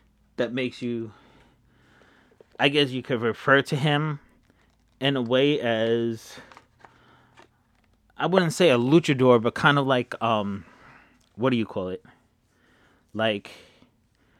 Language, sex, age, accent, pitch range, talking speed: English, male, 30-49, American, 105-130 Hz, 125 wpm